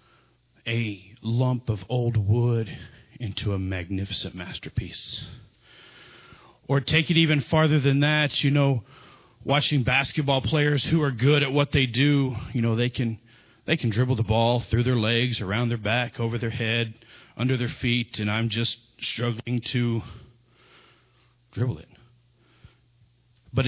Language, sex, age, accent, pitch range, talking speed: English, male, 40-59, American, 105-130 Hz, 145 wpm